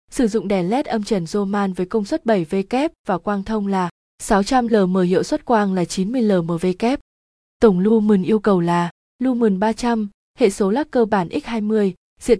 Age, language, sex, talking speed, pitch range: 20-39, Vietnamese, female, 170 wpm, 190-235 Hz